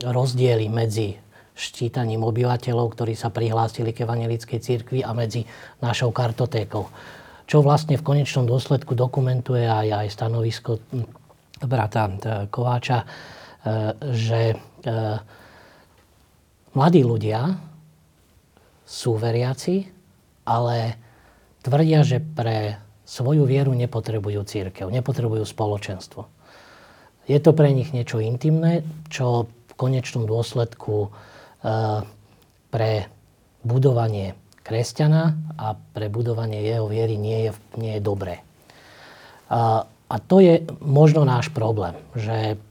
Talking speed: 100 wpm